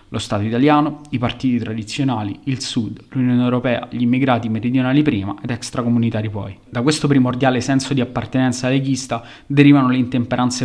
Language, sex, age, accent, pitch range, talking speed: Italian, male, 20-39, native, 120-135 Hz, 150 wpm